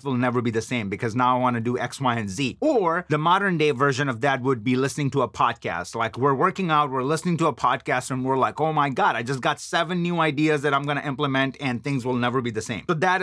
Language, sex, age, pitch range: English, male, 30-49, 130-160 Hz